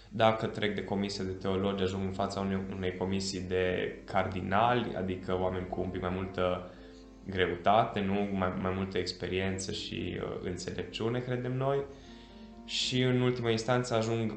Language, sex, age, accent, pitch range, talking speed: Romanian, male, 20-39, native, 95-110 Hz, 145 wpm